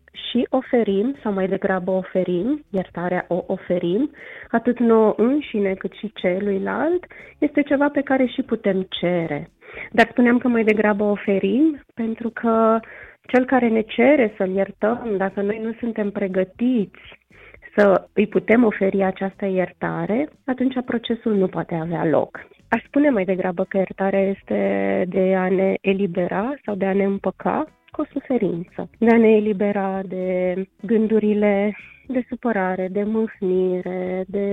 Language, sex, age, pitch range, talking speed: Romanian, female, 20-39, 190-230 Hz, 145 wpm